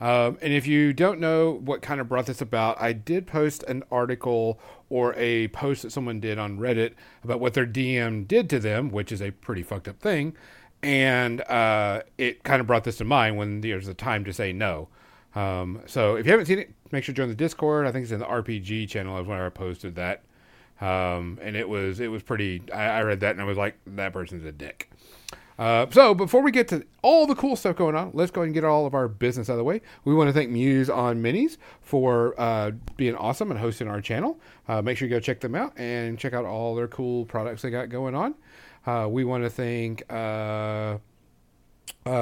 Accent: American